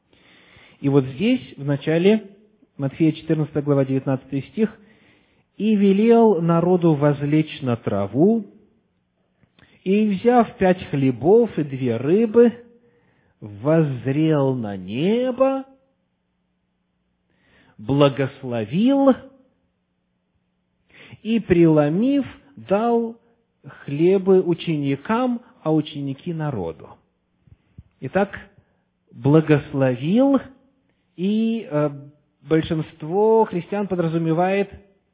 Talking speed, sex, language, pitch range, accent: 70 wpm, male, Russian, 135-205 Hz, native